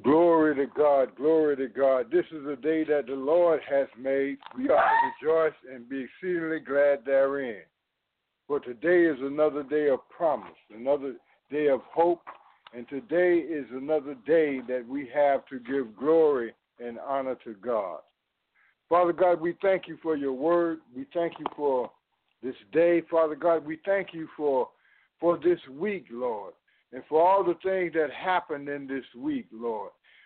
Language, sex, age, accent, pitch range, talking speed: English, male, 60-79, American, 150-205 Hz, 165 wpm